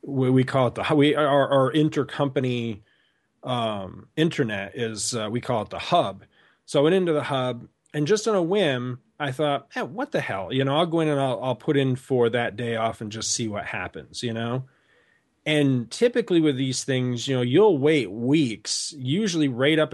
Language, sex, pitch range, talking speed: English, male, 125-150 Hz, 210 wpm